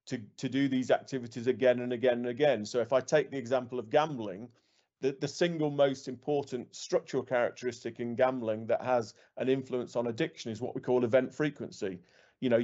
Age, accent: 40-59, British